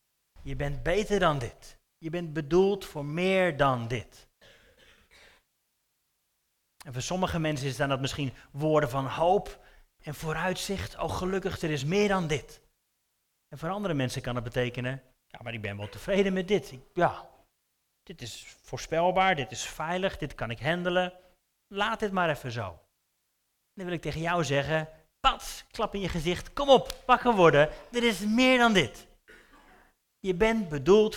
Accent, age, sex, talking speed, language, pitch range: Dutch, 30-49, male, 170 wpm, Dutch, 140-200 Hz